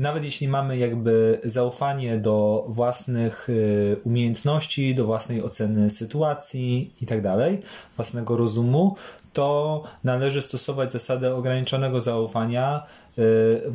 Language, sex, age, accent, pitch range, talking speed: Polish, male, 20-39, native, 115-135 Hz, 110 wpm